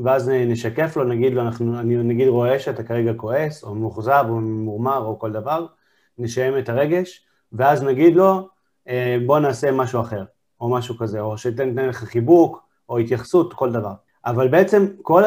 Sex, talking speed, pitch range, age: male, 175 wpm, 120-155 Hz, 30-49